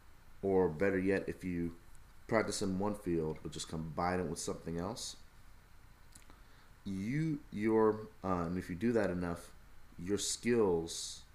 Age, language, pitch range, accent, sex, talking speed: 30-49, English, 80-95 Hz, American, male, 145 wpm